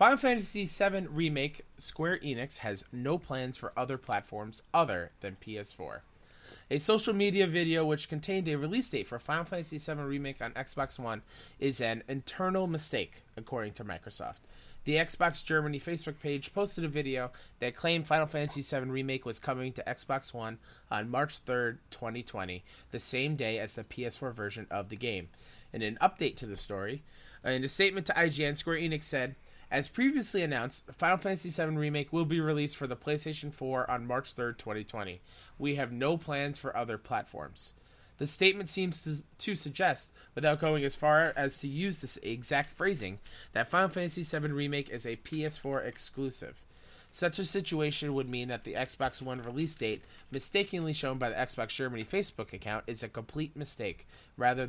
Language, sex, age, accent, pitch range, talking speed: English, male, 20-39, American, 120-160 Hz, 175 wpm